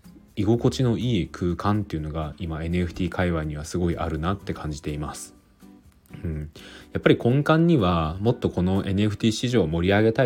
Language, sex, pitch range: Japanese, male, 80-105 Hz